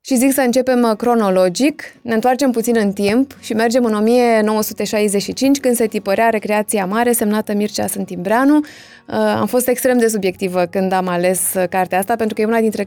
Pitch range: 195-225 Hz